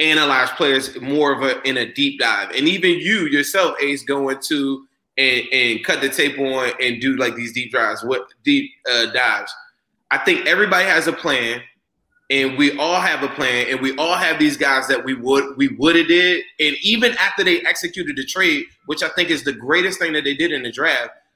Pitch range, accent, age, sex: 140-220 Hz, American, 20-39, male